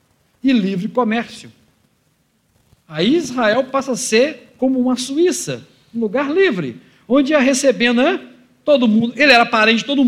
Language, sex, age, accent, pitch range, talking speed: Portuguese, male, 50-69, Brazilian, 195-275 Hz, 150 wpm